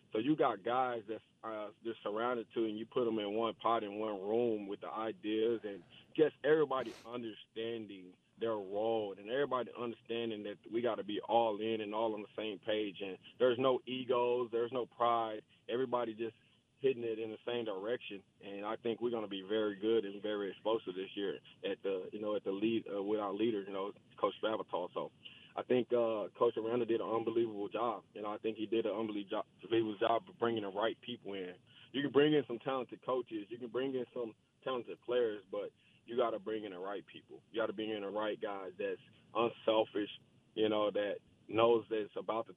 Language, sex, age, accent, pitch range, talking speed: English, male, 20-39, American, 105-120 Hz, 215 wpm